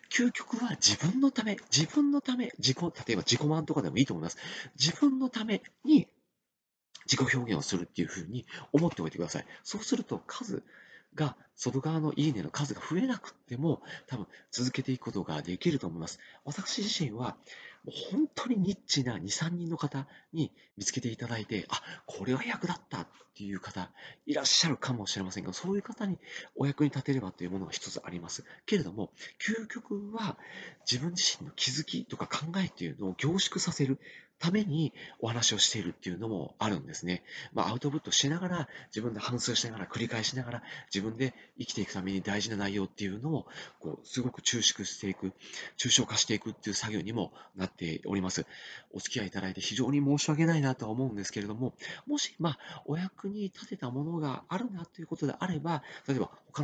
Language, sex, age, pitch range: Japanese, male, 40-59, 110-170 Hz